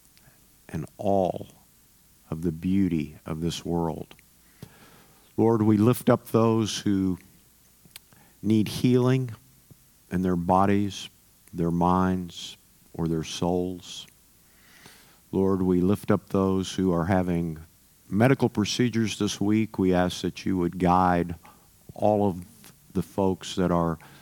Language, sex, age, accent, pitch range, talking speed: English, male, 50-69, American, 90-105 Hz, 120 wpm